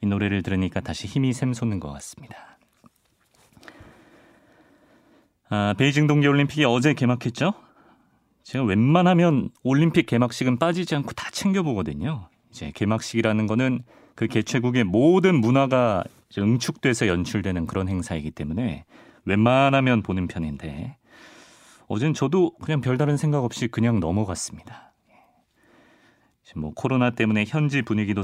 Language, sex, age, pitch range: Korean, male, 30-49, 105-150 Hz